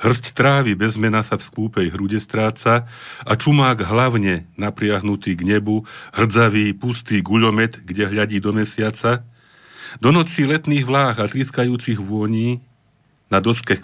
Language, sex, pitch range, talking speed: Slovak, male, 95-120 Hz, 130 wpm